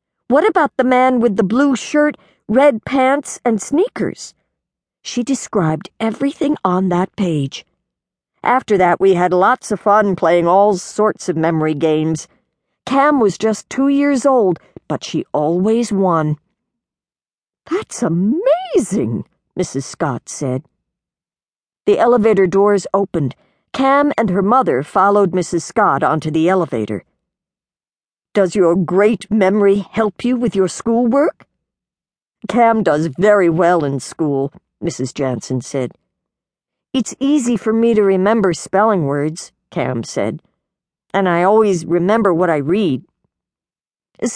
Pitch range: 160-230 Hz